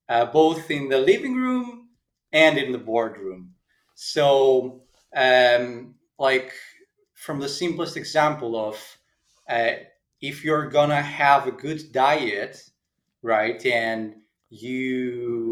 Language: English